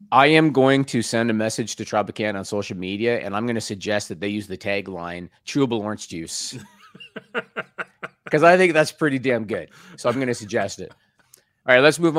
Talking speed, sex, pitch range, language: 205 wpm, male, 105-140 Hz, English